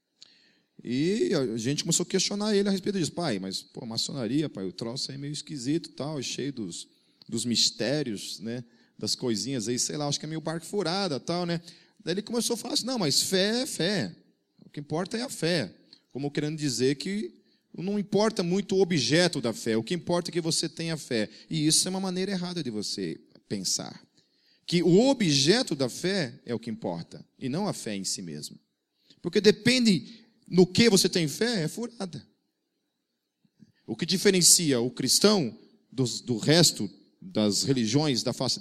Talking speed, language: 195 wpm, Portuguese